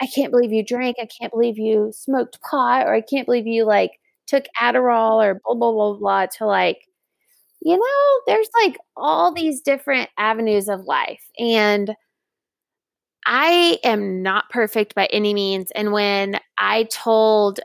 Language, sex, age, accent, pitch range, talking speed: English, female, 20-39, American, 205-260 Hz, 165 wpm